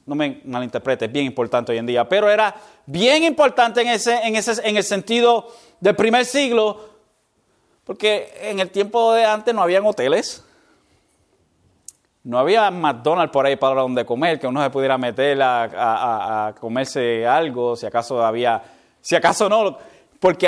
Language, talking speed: Spanish, 165 wpm